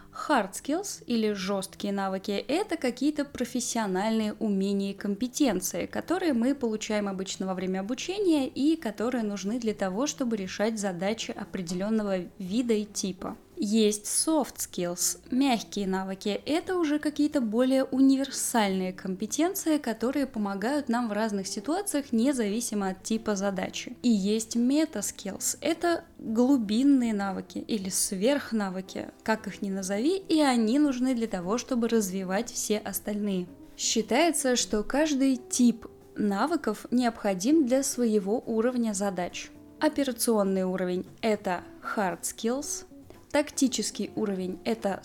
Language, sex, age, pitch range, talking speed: Russian, female, 20-39, 200-270 Hz, 125 wpm